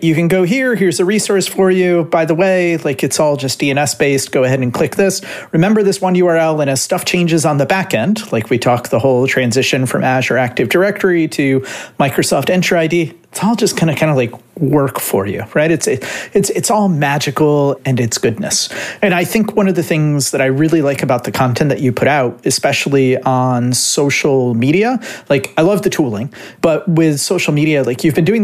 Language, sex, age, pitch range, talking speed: English, male, 40-59, 130-175 Hz, 215 wpm